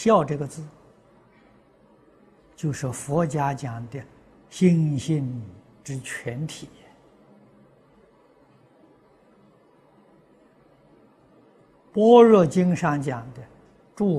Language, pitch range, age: Chinese, 125-180 Hz, 60-79